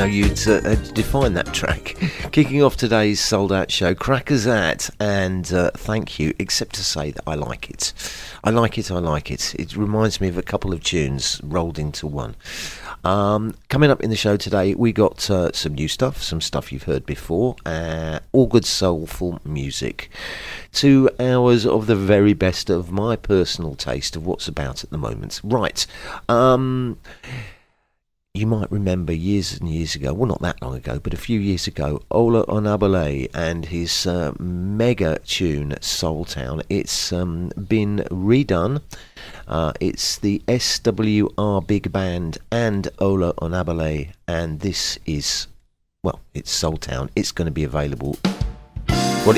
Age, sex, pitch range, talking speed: 40-59, male, 80-110 Hz, 160 wpm